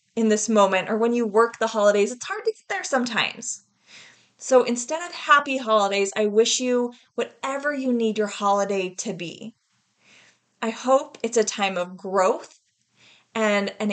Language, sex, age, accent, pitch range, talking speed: English, female, 20-39, American, 210-260 Hz, 170 wpm